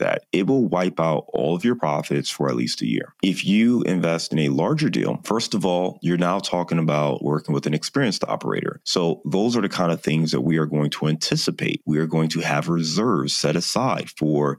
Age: 30-49